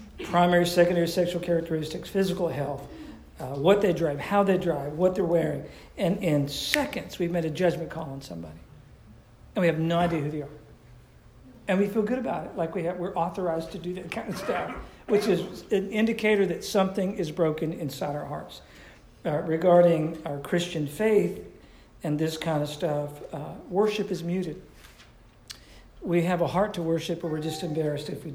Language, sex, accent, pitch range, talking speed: English, male, American, 145-175 Hz, 185 wpm